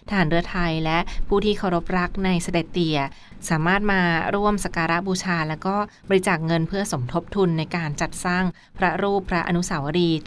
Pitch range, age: 165-190 Hz, 20-39